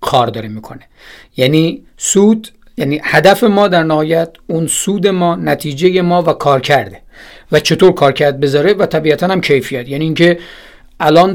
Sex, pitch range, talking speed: male, 135-175 Hz, 160 wpm